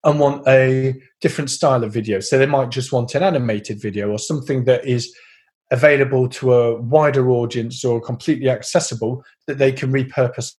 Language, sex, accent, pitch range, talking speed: English, male, British, 120-155 Hz, 175 wpm